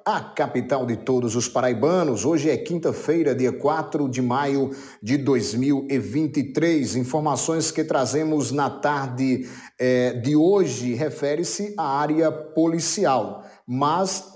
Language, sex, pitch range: Portuguese, male, 135-165 Hz